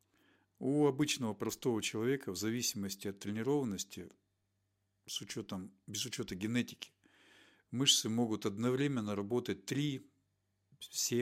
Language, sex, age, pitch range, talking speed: Russian, male, 50-69, 100-120 Hz, 90 wpm